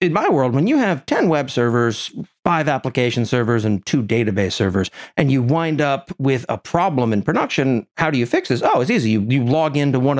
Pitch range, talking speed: 115-150 Hz, 225 wpm